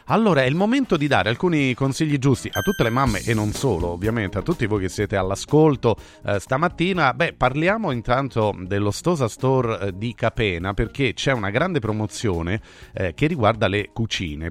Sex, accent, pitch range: male, native, 105-150 Hz